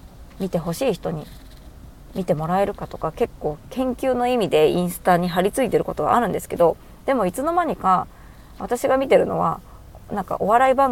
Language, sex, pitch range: Japanese, female, 175-245 Hz